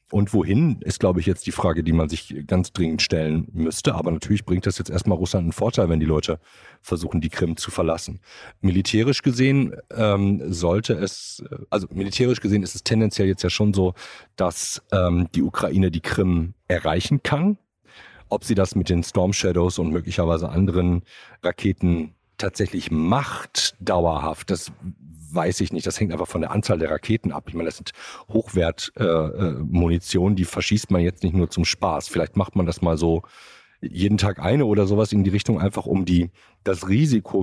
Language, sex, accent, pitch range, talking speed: German, male, German, 85-105 Hz, 185 wpm